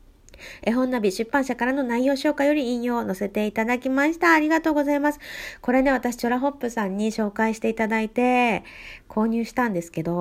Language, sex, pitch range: Japanese, female, 190-265 Hz